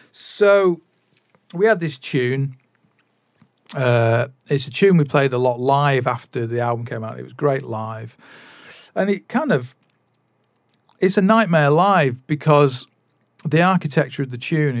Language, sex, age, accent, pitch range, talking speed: English, male, 40-59, British, 120-155 Hz, 150 wpm